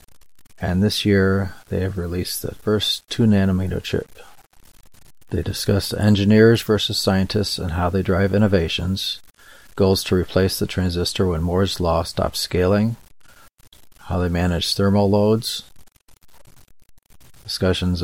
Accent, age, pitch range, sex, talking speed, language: American, 40-59, 90-100 Hz, male, 120 wpm, English